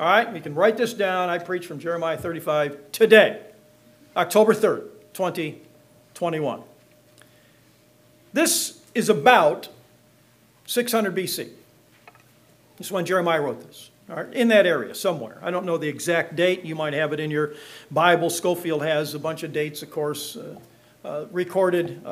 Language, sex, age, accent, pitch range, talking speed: English, male, 50-69, American, 160-215 Hz, 155 wpm